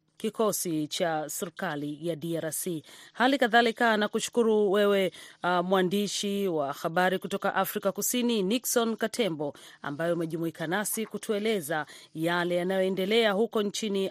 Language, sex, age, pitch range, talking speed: Swahili, female, 40-59, 170-210 Hz, 115 wpm